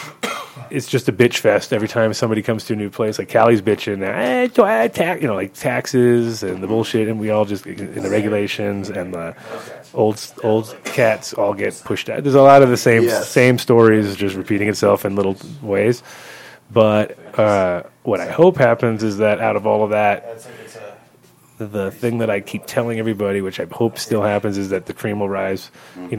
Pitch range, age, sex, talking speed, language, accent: 100-115 Hz, 30-49, male, 200 wpm, English, American